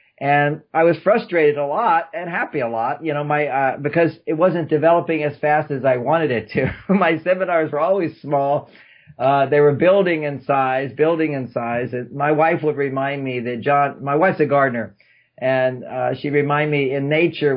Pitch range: 135-160 Hz